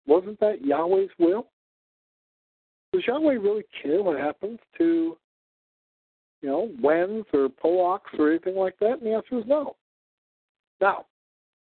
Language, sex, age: English, male, 60-79